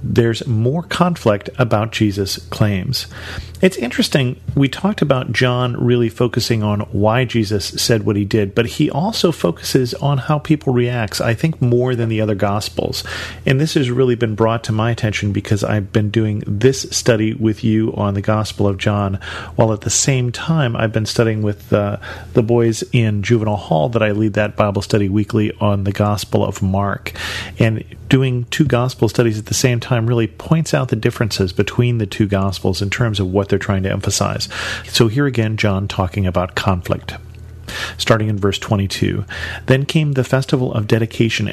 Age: 40-59